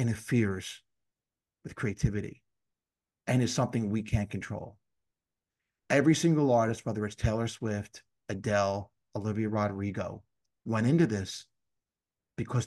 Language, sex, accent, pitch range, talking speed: English, male, American, 110-155 Hz, 110 wpm